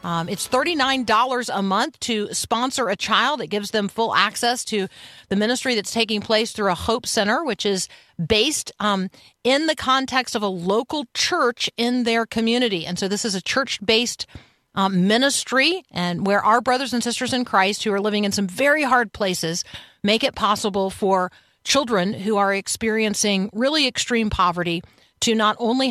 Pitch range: 195-245 Hz